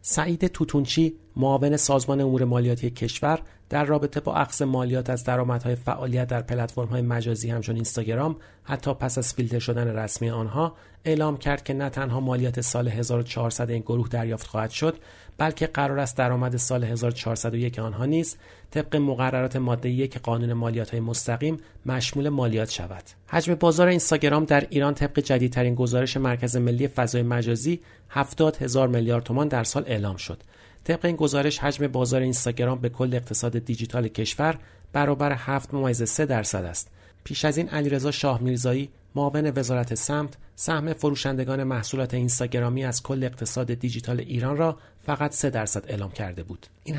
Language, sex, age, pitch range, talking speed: Persian, male, 40-59, 115-145 Hz, 150 wpm